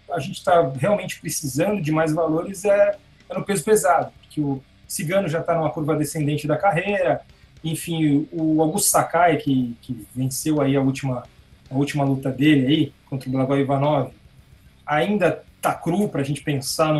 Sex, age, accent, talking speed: male, 20-39, Brazilian, 175 wpm